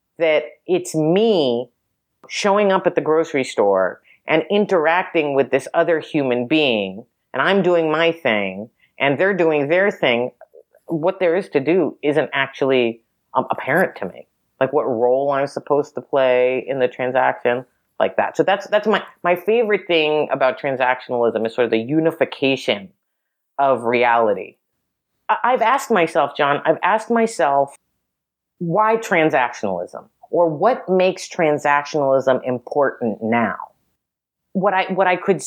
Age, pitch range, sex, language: 40-59, 135-190 Hz, female, English